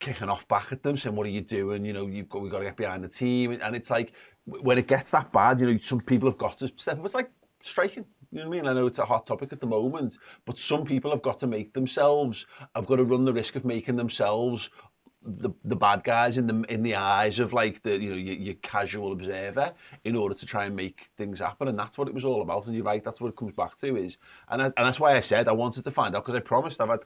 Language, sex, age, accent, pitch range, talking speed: English, male, 30-49, British, 105-130 Hz, 290 wpm